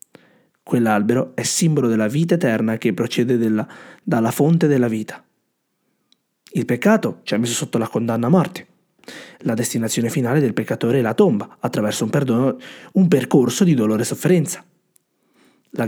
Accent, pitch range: native, 125-180 Hz